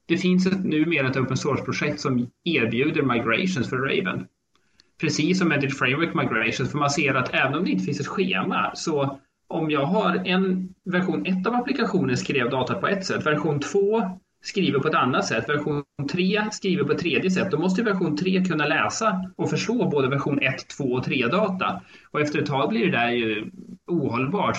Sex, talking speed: male, 200 wpm